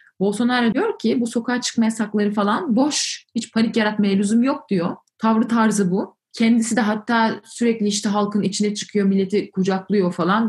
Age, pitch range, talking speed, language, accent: 30-49, 185-230 Hz, 165 wpm, Turkish, native